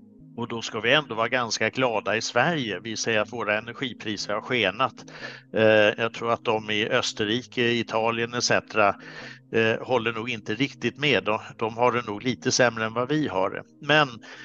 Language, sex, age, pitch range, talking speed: Swedish, male, 60-79, 110-135 Hz, 170 wpm